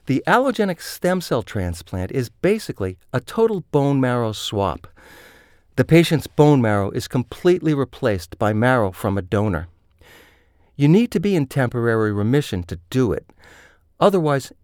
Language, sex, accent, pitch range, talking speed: English, male, American, 105-170 Hz, 145 wpm